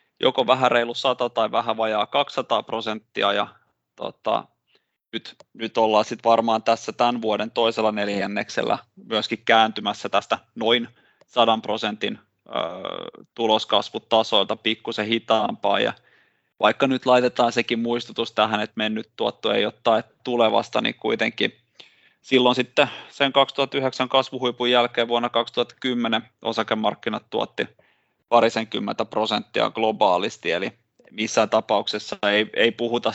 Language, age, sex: Finnish, 20-39, male